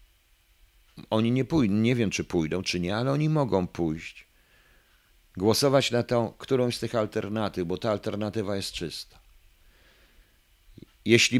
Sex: male